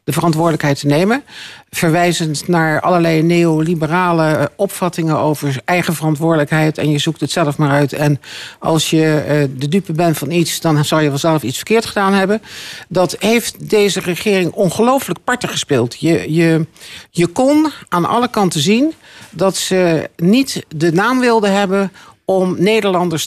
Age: 50-69